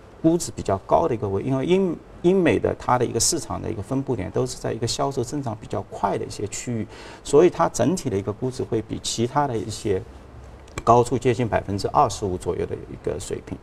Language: Chinese